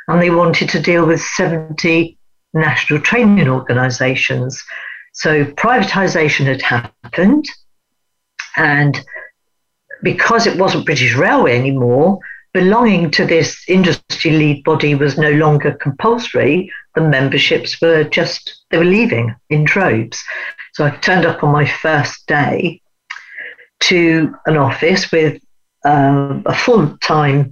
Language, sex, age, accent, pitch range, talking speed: English, female, 60-79, British, 150-195 Hz, 120 wpm